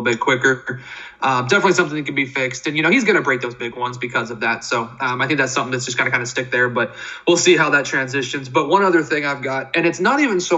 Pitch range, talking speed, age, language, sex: 130-165 Hz, 290 wpm, 20-39, English, male